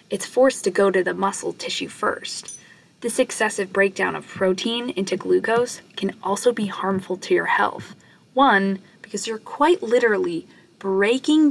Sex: female